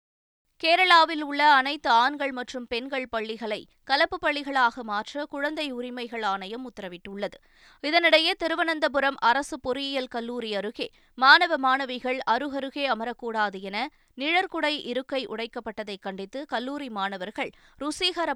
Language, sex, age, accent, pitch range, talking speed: Tamil, female, 20-39, native, 220-285 Hz, 105 wpm